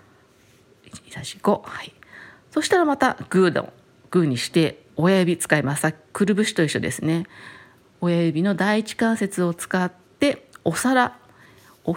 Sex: female